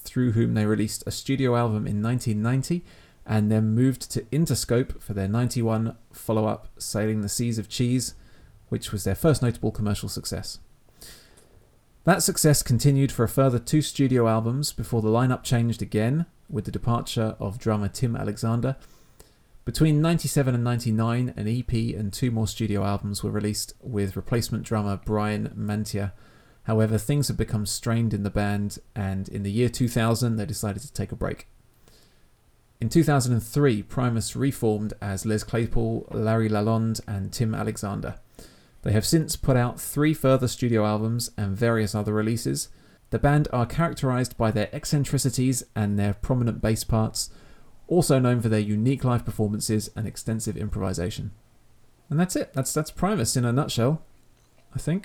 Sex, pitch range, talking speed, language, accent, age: male, 105-125 Hz, 160 wpm, English, British, 30-49